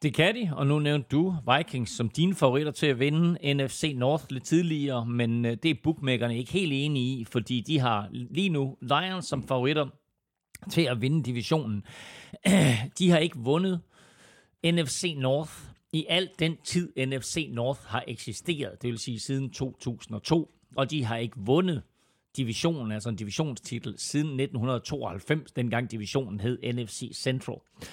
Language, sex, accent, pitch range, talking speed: Danish, male, native, 120-165 Hz, 155 wpm